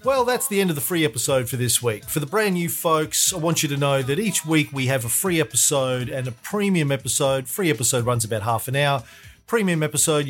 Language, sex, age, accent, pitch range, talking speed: English, male, 40-59, Australian, 125-160 Hz, 245 wpm